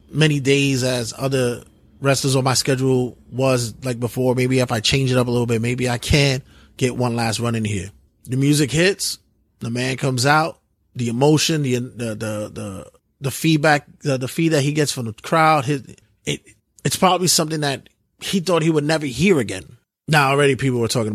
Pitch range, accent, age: 115-150 Hz, American, 20-39